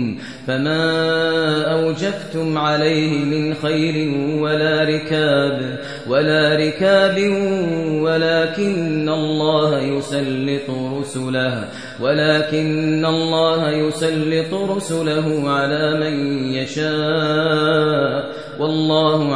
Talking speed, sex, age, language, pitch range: 60 wpm, male, 30-49, English, 140-155 Hz